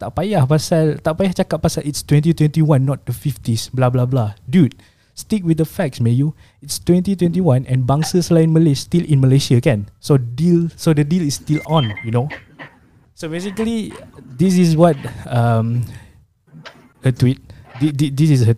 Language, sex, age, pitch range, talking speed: Malay, male, 20-39, 115-150 Hz, 170 wpm